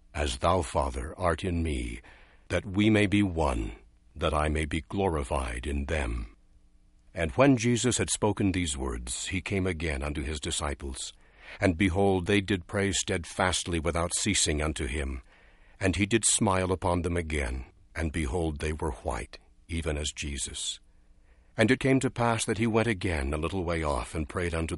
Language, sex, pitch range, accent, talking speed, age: English, male, 80-105 Hz, American, 175 wpm, 60-79